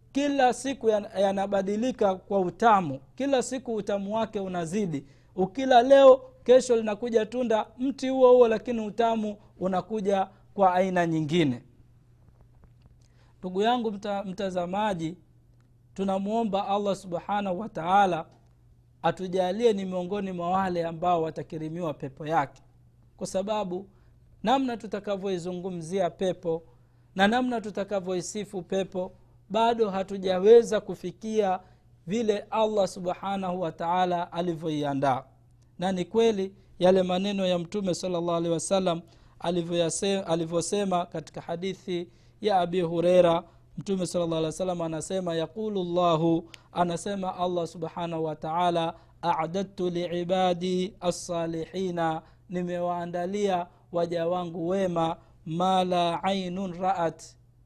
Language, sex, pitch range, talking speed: Swahili, male, 165-200 Hz, 105 wpm